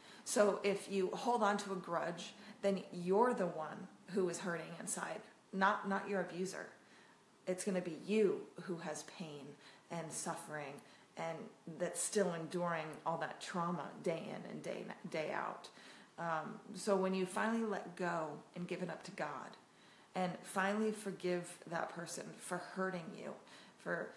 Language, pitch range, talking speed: English, 175-205 Hz, 165 wpm